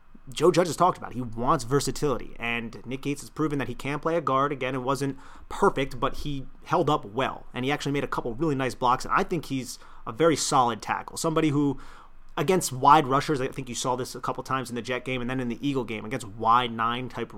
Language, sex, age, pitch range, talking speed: English, male, 30-49, 120-150 Hz, 250 wpm